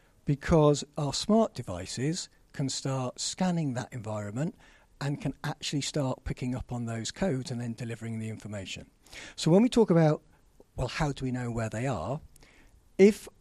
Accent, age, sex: British, 60-79, male